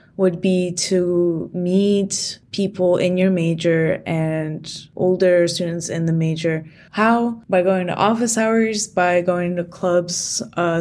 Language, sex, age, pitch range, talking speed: English, female, 20-39, 170-195 Hz, 140 wpm